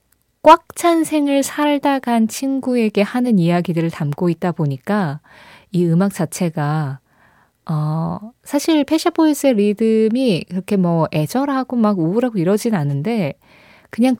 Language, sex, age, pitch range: Korean, female, 20-39, 160-225 Hz